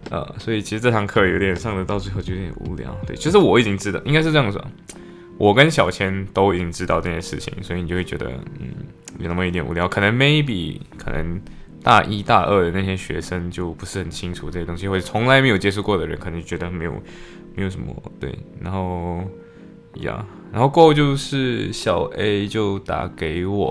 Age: 20-39